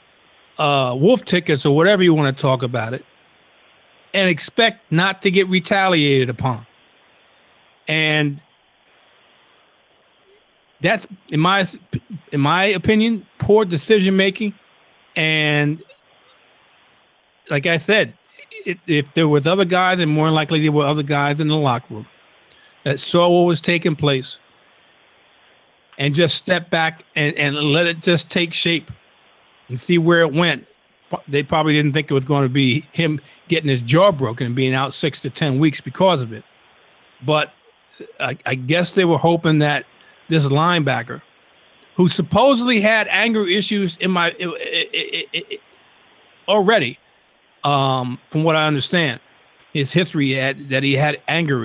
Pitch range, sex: 145-185 Hz, male